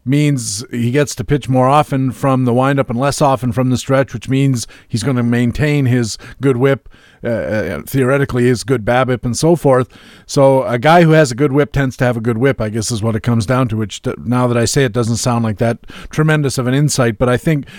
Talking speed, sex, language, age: 250 wpm, male, English, 40-59